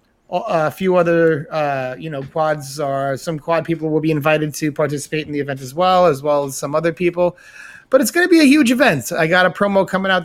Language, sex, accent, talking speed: English, male, American, 240 wpm